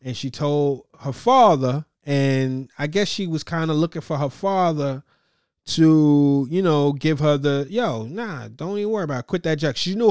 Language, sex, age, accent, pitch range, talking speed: English, male, 30-49, American, 140-175 Hz, 200 wpm